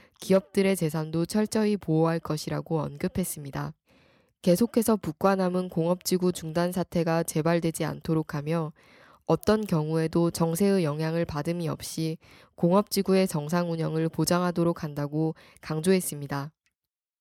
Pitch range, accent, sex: 160-185 Hz, native, female